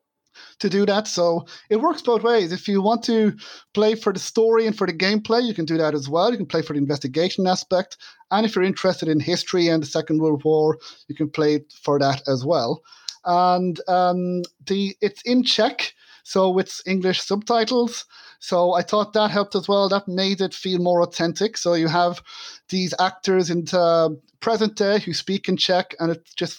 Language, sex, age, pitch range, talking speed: English, male, 30-49, 160-200 Hz, 205 wpm